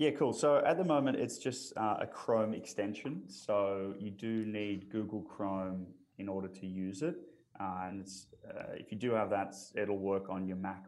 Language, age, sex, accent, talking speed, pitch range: English, 20-39, male, Australian, 200 wpm, 95-115 Hz